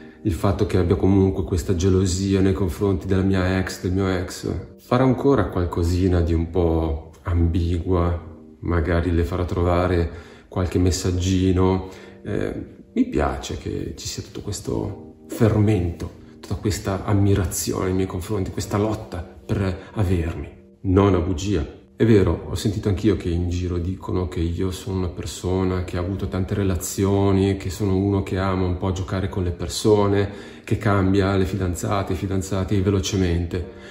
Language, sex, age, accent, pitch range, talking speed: Italian, male, 30-49, native, 90-100 Hz, 155 wpm